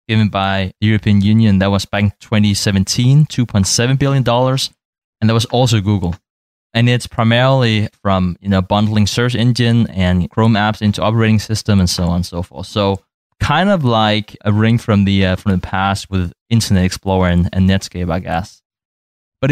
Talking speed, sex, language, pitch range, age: 180 wpm, male, English, 100-125 Hz, 20-39